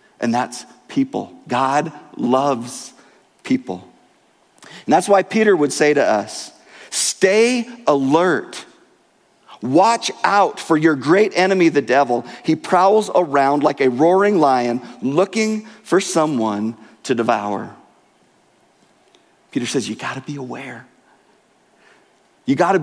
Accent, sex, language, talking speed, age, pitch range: American, male, English, 115 wpm, 40-59, 120-185 Hz